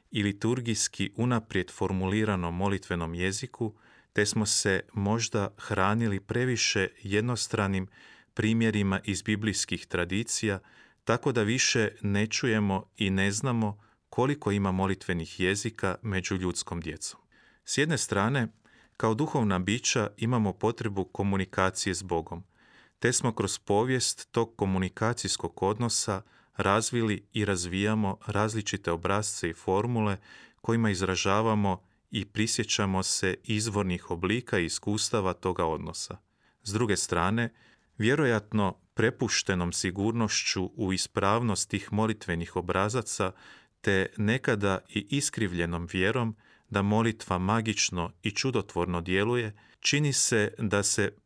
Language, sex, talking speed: Croatian, male, 110 wpm